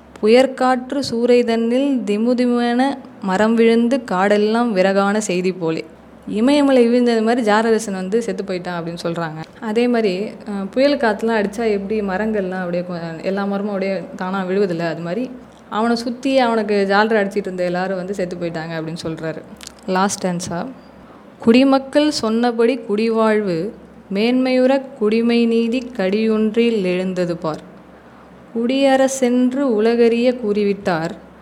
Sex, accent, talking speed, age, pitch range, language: female, native, 115 wpm, 20-39, 185-240 Hz, Tamil